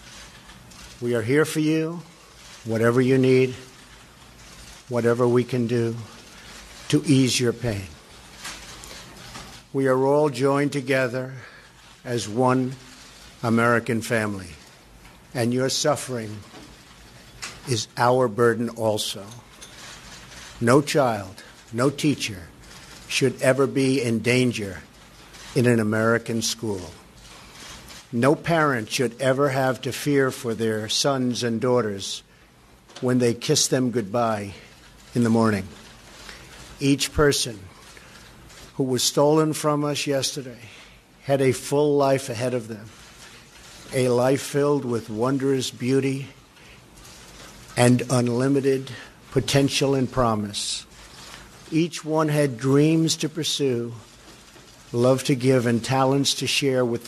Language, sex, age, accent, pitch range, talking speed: English, male, 60-79, American, 110-135 Hz, 110 wpm